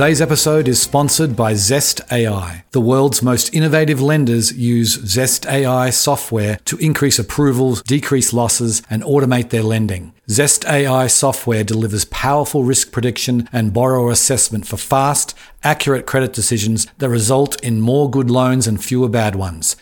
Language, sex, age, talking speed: English, male, 40-59, 150 wpm